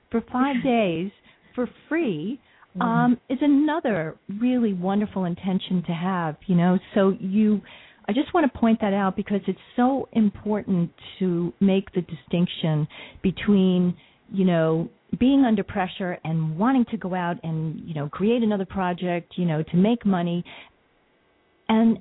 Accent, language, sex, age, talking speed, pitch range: American, English, female, 40-59, 150 wpm, 160-215 Hz